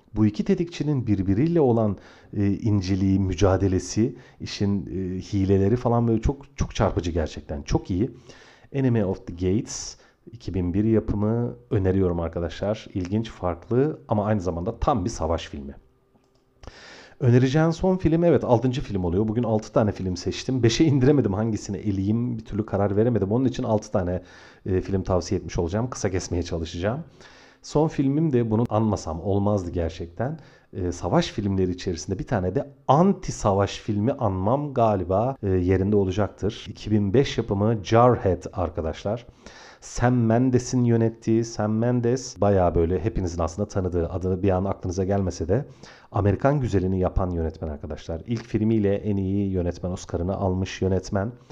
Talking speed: 140 wpm